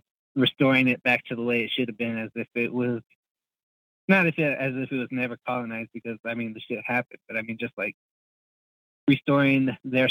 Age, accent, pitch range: 20-39, American, 115-130 Hz